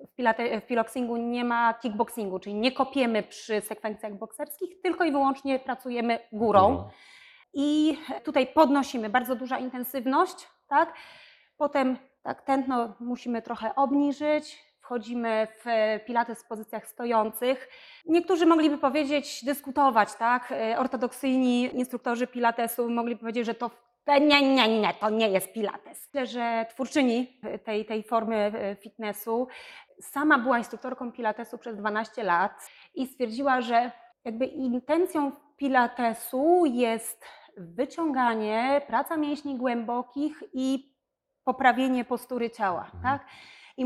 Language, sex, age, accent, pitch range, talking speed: Polish, female, 30-49, native, 230-275 Hz, 120 wpm